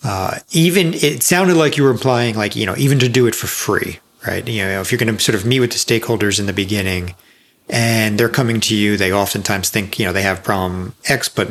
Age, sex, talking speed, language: 40-59, male, 250 wpm, English